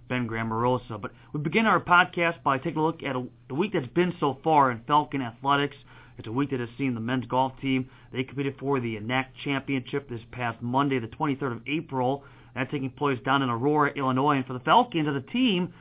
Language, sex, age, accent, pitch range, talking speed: English, male, 30-49, American, 130-165 Hz, 220 wpm